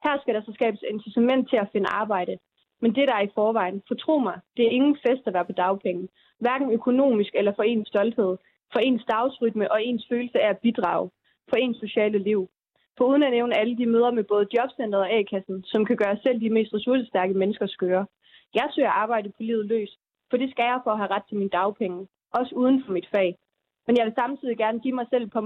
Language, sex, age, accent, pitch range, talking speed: Danish, female, 20-39, native, 200-240 Hz, 240 wpm